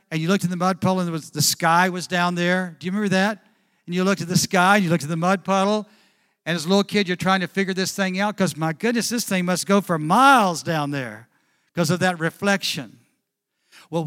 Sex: male